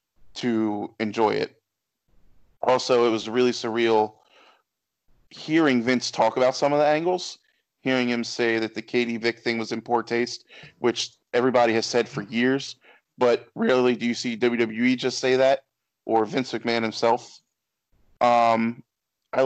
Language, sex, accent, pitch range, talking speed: English, male, American, 115-130 Hz, 150 wpm